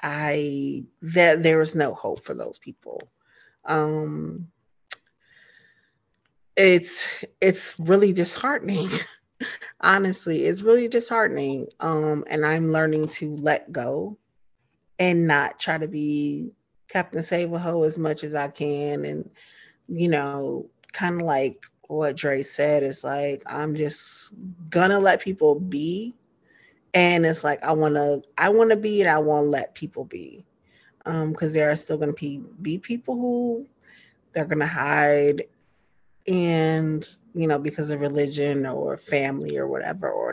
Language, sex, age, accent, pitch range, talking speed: English, female, 30-49, American, 150-195 Hz, 135 wpm